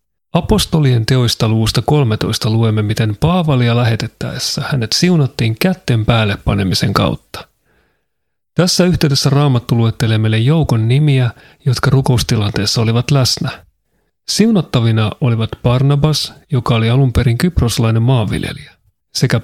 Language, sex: Finnish, male